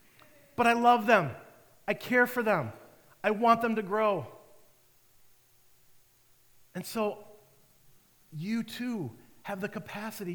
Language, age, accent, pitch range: English, 40-59, American, 135-195 Hz